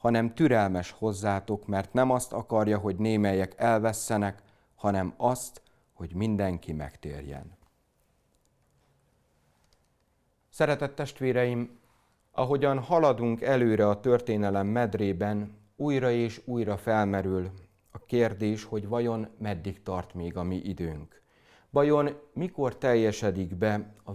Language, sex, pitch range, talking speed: Hungarian, male, 95-120 Hz, 105 wpm